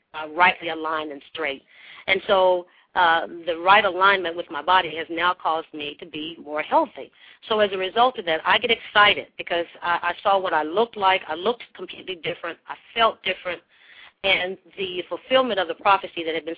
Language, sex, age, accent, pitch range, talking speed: English, female, 40-59, American, 165-195 Hz, 200 wpm